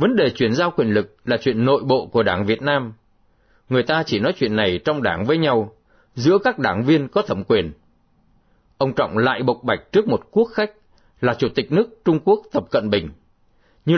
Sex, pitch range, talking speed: male, 110-170 Hz, 215 wpm